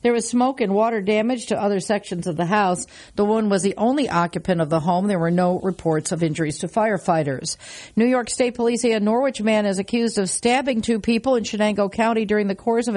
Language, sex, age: English, female, 50-69